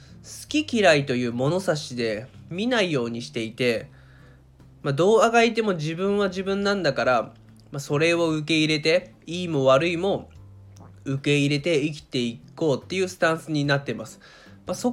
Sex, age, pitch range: male, 20-39, 115-190 Hz